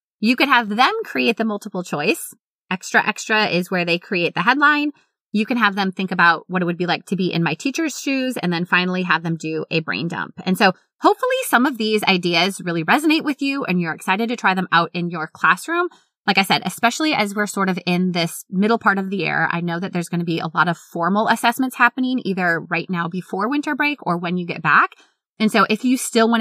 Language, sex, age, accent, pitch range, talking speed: English, female, 20-39, American, 175-225 Hz, 245 wpm